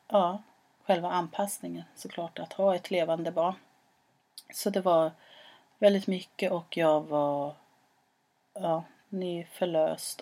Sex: female